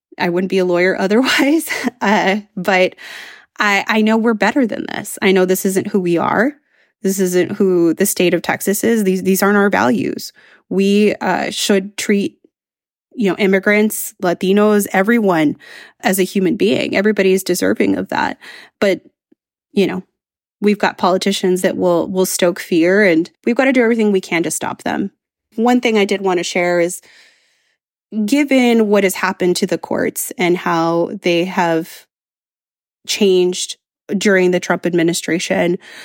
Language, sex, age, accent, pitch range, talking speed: English, female, 20-39, American, 175-210 Hz, 165 wpm